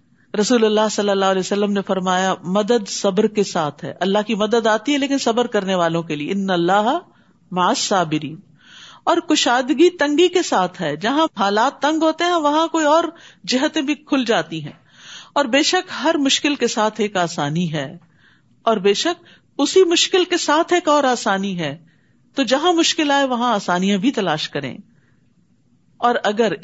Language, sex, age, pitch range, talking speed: Urdu, female, 50-69, 190-275 Hz, 175 wpm